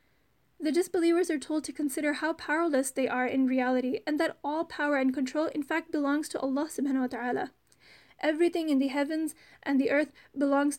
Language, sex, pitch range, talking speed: English, female, 275-325 Hz, 190 wpm